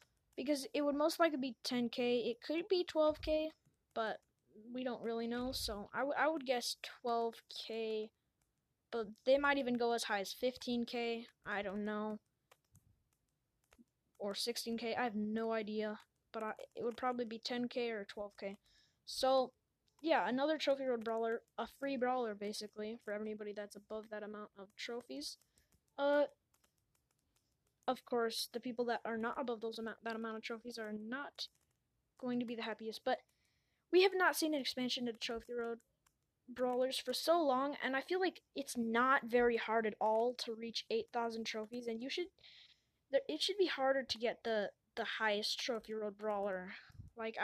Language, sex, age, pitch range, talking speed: English, female, 10-29, 220-265 Hz, 165 wpm